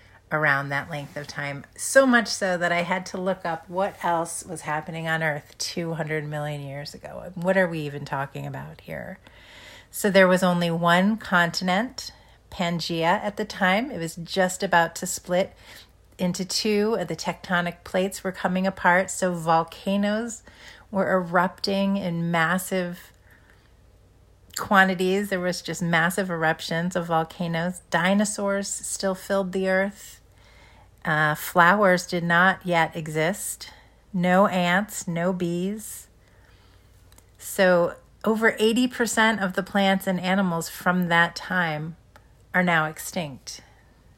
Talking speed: 135 wpm